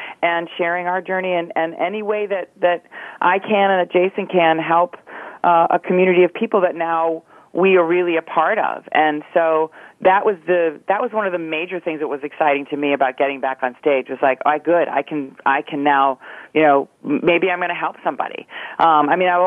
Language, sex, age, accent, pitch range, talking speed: English, female, 40-59, American, 145-170 Hz, 230 wpm